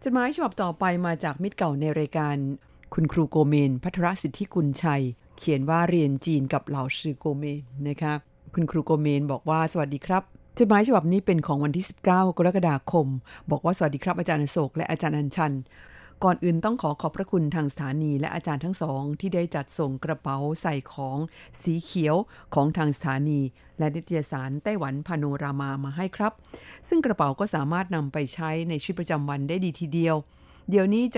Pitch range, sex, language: 145-180 Hz, female, Thai